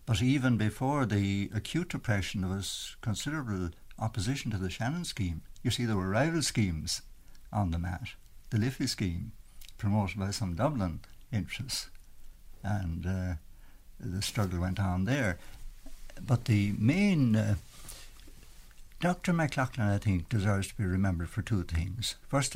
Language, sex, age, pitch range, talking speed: English, male, 60-79, 95-125 Hz, 145 wpm